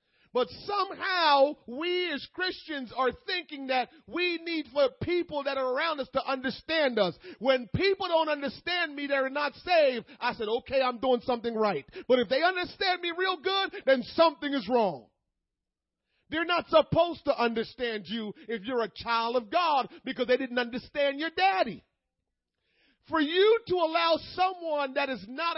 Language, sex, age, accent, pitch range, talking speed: English, male, 40-59, American, 245-330 Hz, 165 wpm